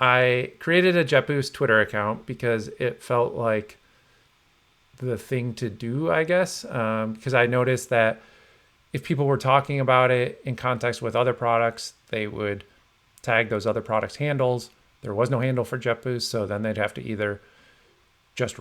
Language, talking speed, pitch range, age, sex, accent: English, 170 wpm, 105-130 Hz, 40-59, male, American